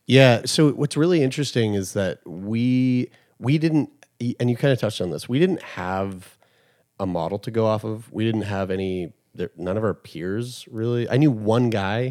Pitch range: 95-125 Hz